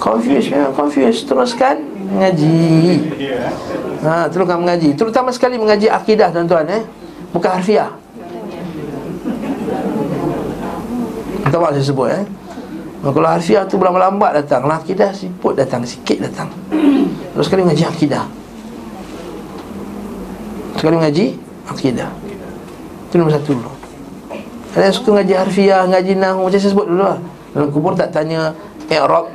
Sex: male